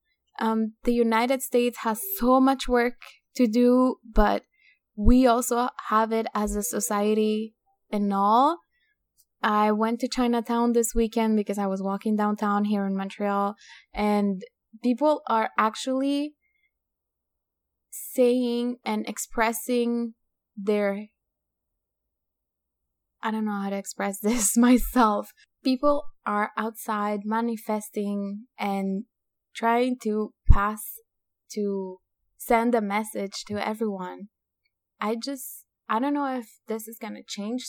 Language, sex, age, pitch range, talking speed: English, female, 10-29, 210-255 Hz, 120 wpm